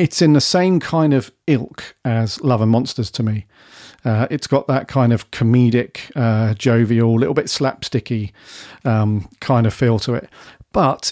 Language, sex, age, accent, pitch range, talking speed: English, male, 40-59, British, 110-140 Hz, 175 wpm